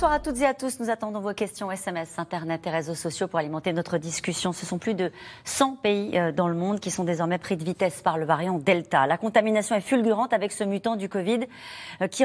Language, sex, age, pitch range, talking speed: French, female, 40-59, 175-225 Hz, 235 wpm